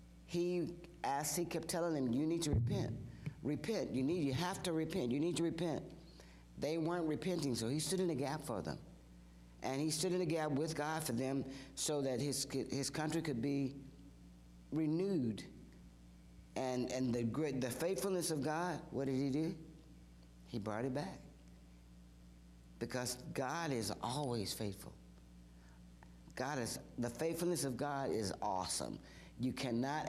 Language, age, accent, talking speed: English, 60-79, American, 160 wpm